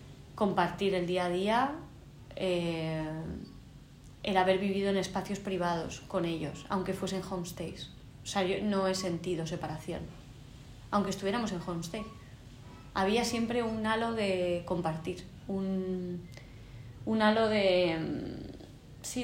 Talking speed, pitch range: 120 wpm, 160-195 Hz